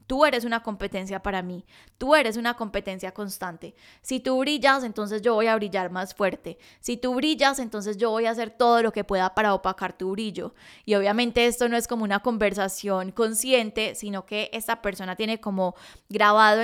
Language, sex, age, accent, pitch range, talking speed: Spanish, female, 10-29, Colombian, 200-235 Hz, 190 wpm